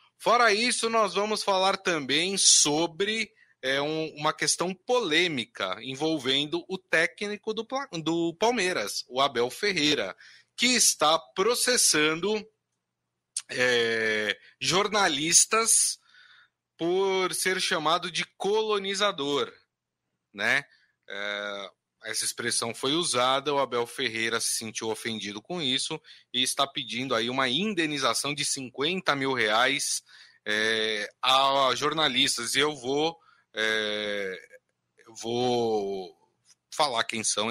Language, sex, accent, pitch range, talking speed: Portuguese, male, Brazilian, 115-170 Hz, 95 wpm